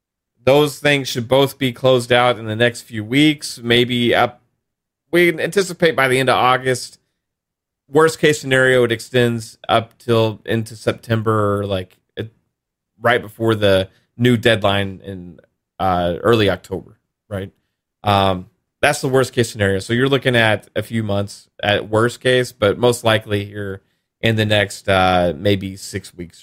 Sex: male